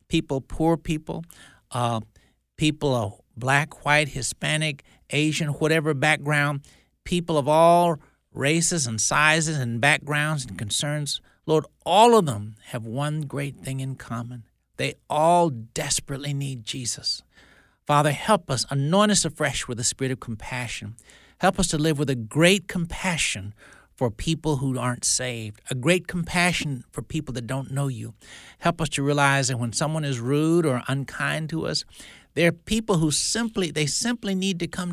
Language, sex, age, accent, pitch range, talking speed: English, male, 60-79, American, 125-160 Hz, 160 wpm